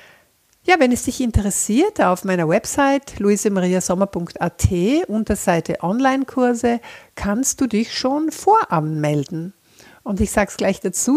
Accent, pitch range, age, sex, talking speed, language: German, 170-240 Hz, 60-79, female, 120 wpm, German